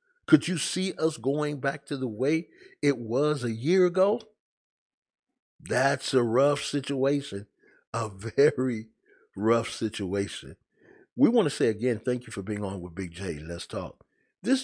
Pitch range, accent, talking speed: 95-135 Hz, American, 155 wpm